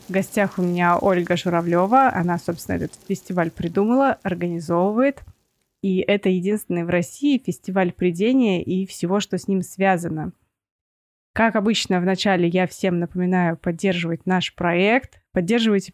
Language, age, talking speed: Russian, 20-39, 130 wpm